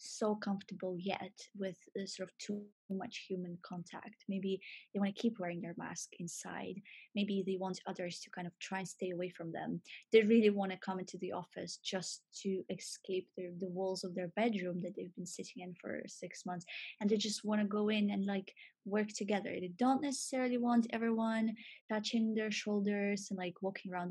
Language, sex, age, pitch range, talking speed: English, female, 20-39, 190-225 Hz, 200 wpm